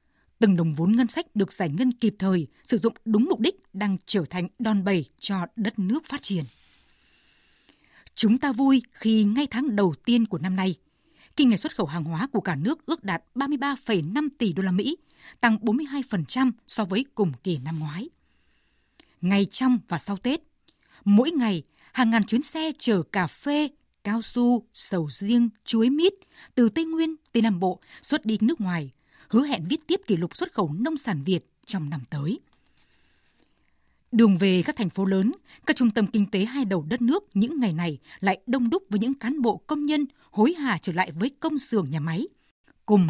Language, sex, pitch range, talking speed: Vietnamese, female, 190-255 Hz, 195 wpm